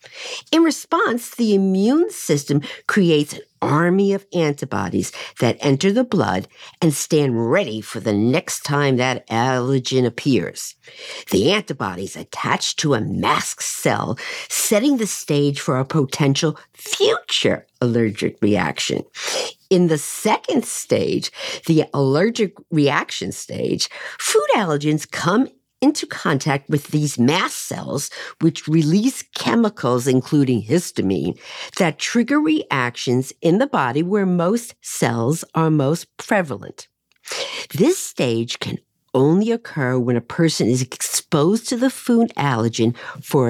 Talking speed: 125 wpm